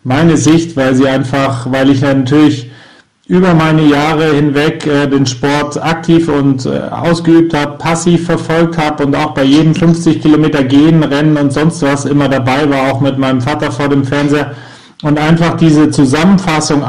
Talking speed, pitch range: 165 wpm, 140-160 Hz